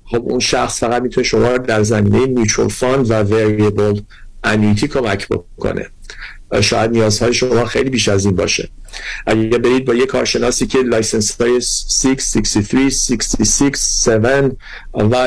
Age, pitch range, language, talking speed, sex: 50-69, 110-125 Hz, Persian, 120 wpm, male